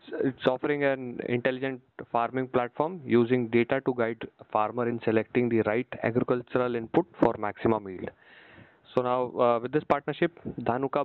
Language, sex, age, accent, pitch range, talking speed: English, male, 20-39, Indian, 115-130 Hz, 150 wpm